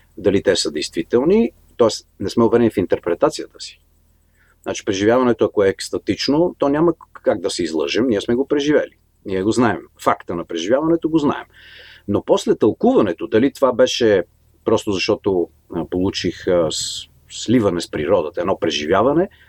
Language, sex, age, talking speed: Bulgarian, male, 40-59, 150 wpm